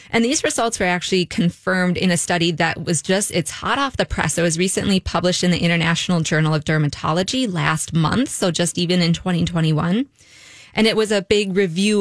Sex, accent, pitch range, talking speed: female, American, 165-215 Hz, 200 wpm